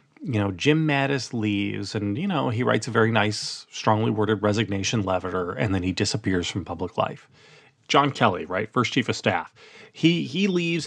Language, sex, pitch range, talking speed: English, male, 105-145 Hz, 190 wpm